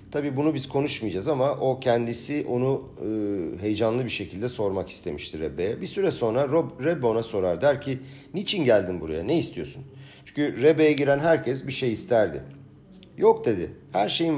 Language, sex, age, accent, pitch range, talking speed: Turkish, male, 50-69, native, 100-145 Hz, 165 wpm